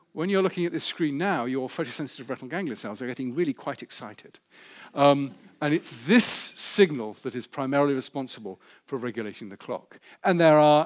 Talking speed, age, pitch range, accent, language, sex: 180 wpm, 50-69, 135-175 Hz, British, English, male